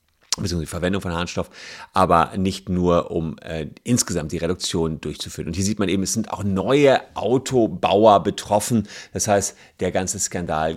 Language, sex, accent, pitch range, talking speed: German, male, German, 95-135 Hz, 160 wpm